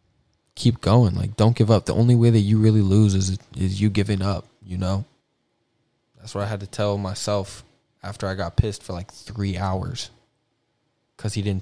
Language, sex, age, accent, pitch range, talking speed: English, male, 20-39, American, 100-120 Hz, 195 wpm